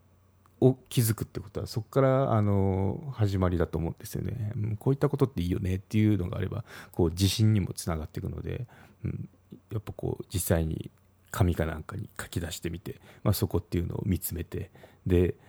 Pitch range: 90-115 Hz